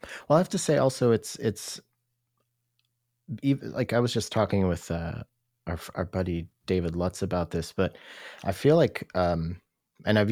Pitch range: 80-110 Hz